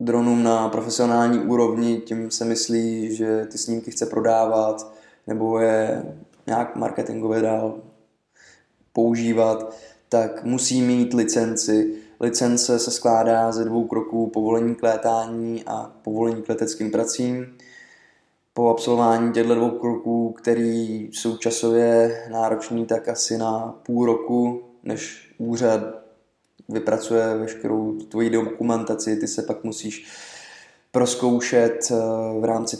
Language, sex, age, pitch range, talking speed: Czech, male, 20-39, 110-115 Hz, 115 wpm